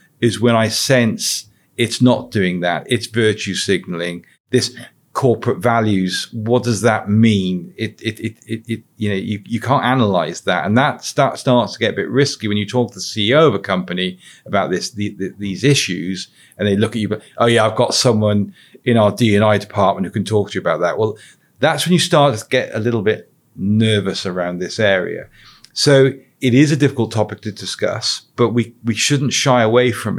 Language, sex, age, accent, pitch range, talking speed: English, male, 40-59, British, 105-130 Hz, 210 wpm